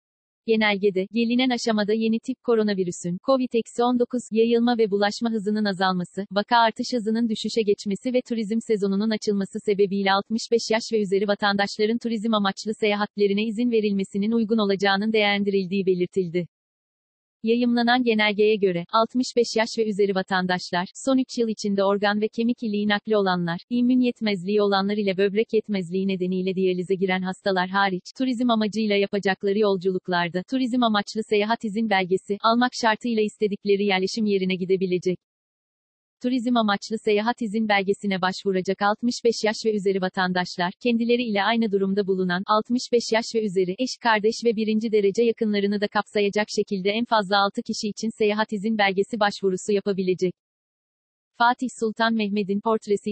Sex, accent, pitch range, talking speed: female, native, 195-225 Hz, 140 wpm